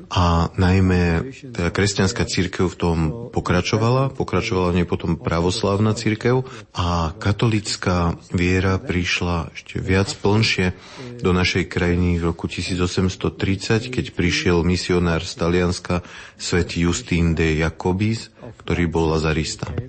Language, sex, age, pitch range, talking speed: Slovak, male, 30-49, 85-100 Hz, 115 wpm